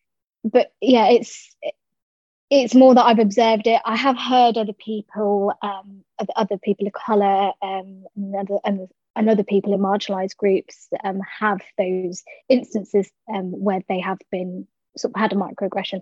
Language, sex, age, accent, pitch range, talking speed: English, female, 20-39, British, 195-225 Hz, 155 wpm